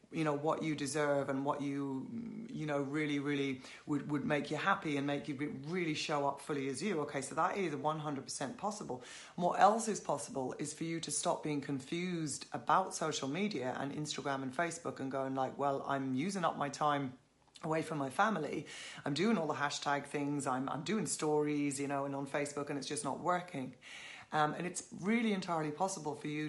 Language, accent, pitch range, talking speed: English, British, 145-170 Hz, 210 wpm